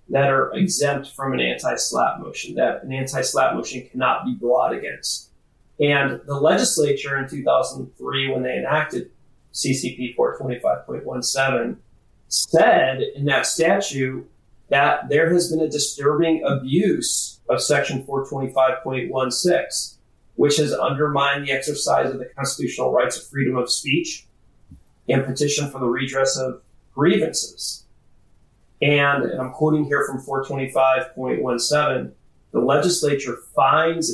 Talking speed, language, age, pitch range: 125 wpm, English, 30-49, 130-145 Hz